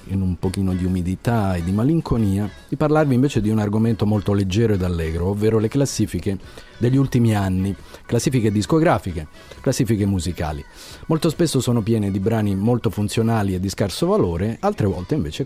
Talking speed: 165 wpm